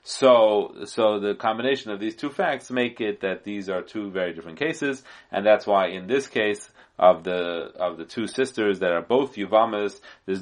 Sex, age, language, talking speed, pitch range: male, 30-49, English, 195 wpm, 95-130 Hz